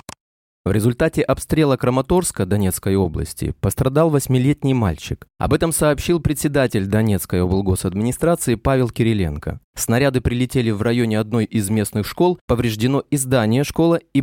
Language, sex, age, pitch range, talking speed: Russian, male, 20-39, 100-140 Hz, 120 wpm